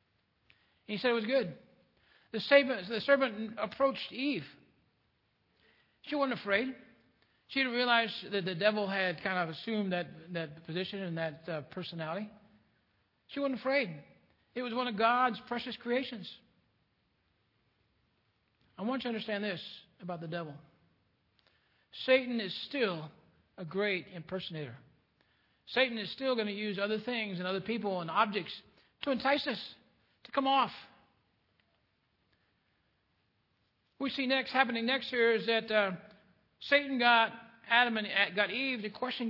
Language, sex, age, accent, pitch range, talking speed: English, male, 60-79, American, 185-245 Hz, 140 wpm